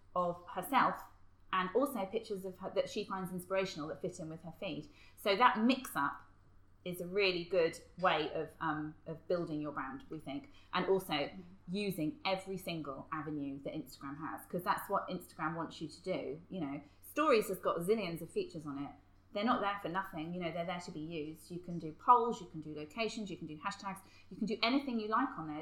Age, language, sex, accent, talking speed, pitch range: 30-49, English, female, British, 220 wpm, 160-215 Hz